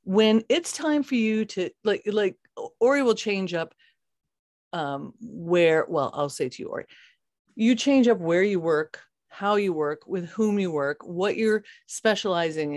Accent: American